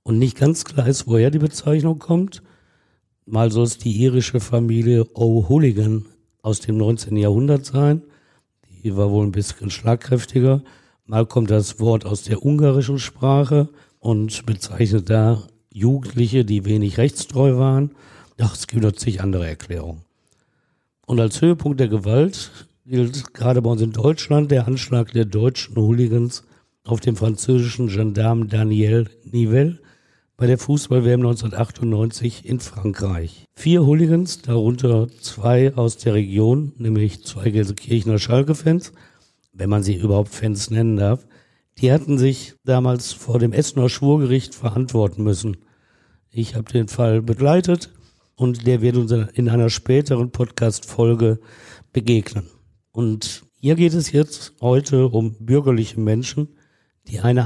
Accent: German